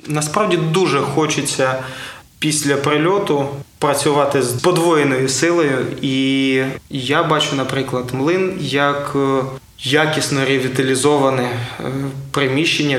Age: 20-39